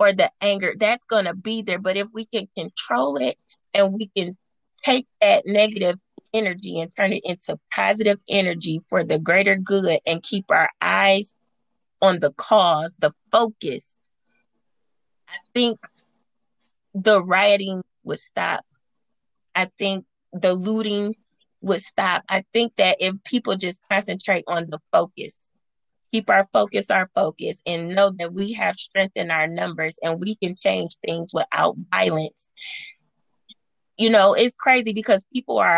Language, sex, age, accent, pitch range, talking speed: English, female, 20-39, American, 180-220 Hz, 150 wpm